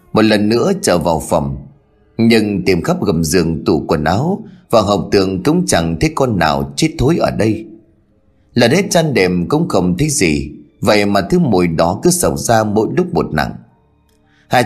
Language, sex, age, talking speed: Vietnamese, male, 30-49, 190 wpm